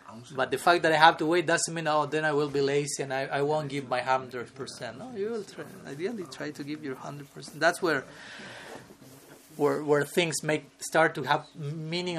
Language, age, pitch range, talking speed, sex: English, 30-49, 135-160 Hz, 210 wpm, male